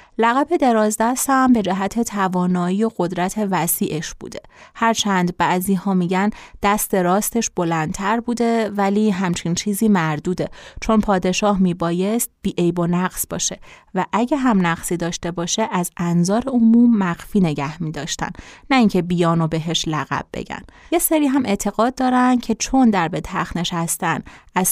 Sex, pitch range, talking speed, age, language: female, 175-225 Hz, 150 wpm, 30-49, Persian